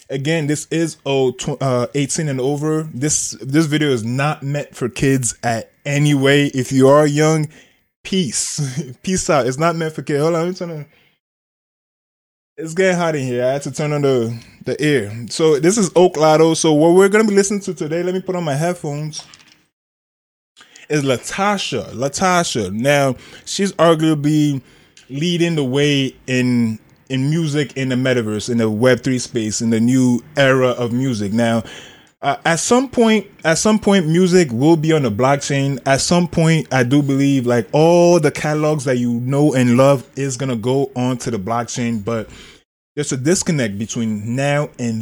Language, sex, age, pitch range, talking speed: English, male, 20-39, 125-160 Hz, 180 wpm